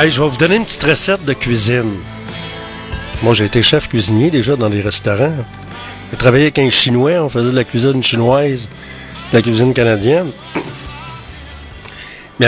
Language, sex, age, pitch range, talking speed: French, male, 60-79, 110-145 Hz, 170 wpm